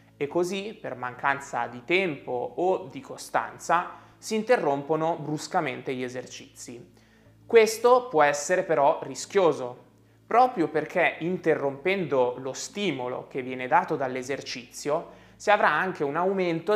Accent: native